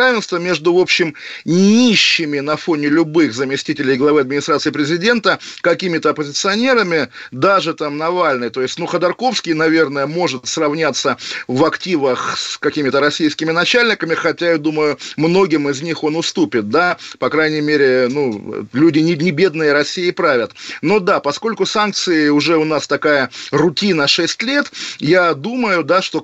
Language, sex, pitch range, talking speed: Russian, male, 150-190 Hz, 145 wpm